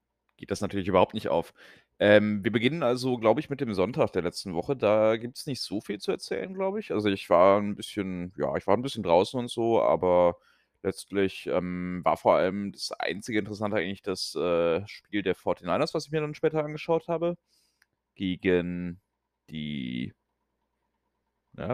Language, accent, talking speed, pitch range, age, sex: German, German, 180 wpm, 90-120 Hz, 30-49, male